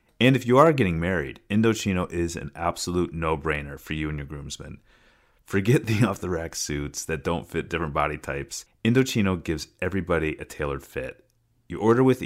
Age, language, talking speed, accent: 30-49, English, 175 wpm, American